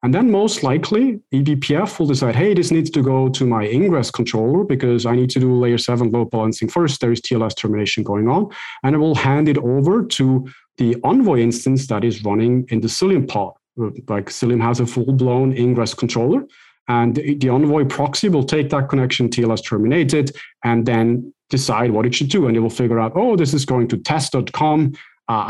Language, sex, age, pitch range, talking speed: English, male, 40-59, 115-150 Hz, 200 wpm